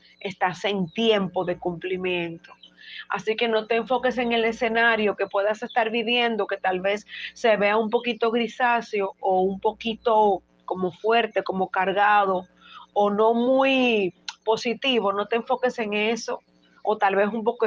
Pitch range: 195-235 Hz